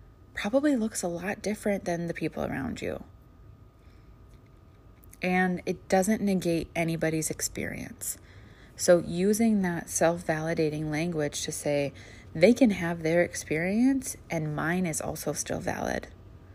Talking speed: 125 wpm